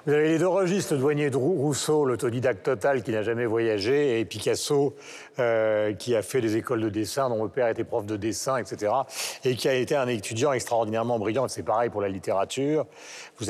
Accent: French